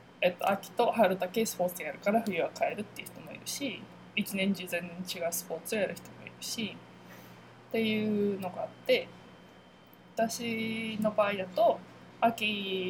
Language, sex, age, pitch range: Japanese, female, 20-39, 175-225 Hz